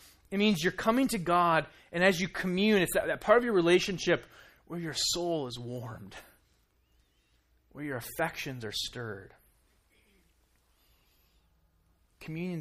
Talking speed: 135 wpm